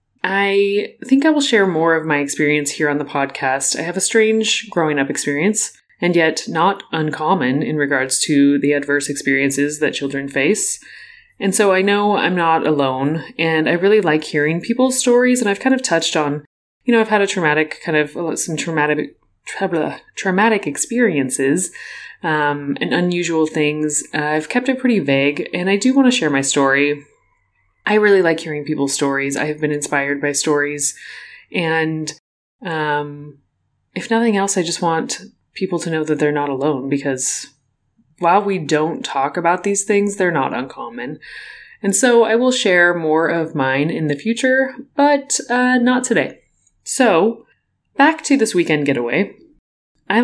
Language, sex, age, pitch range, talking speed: English, female, 20-39, 145-210 Hz, 170 wpm